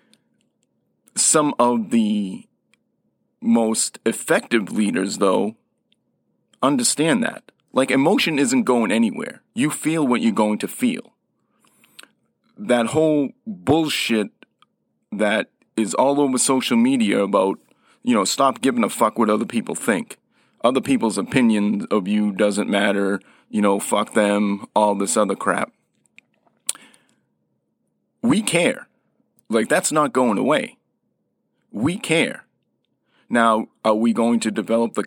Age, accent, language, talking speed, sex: 30-49, American, English, 125 wpm, male